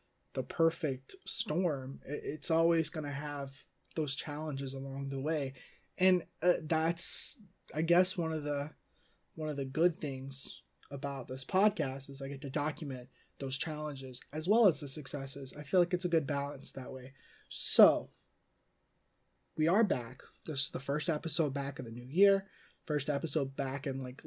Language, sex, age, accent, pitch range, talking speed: English, male, 20-39, American, 140-170 Hz, 170 wpm